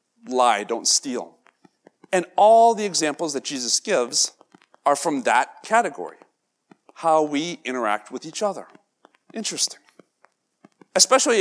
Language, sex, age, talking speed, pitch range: English, male, 40-59, 115 wpm, 145-185 Hz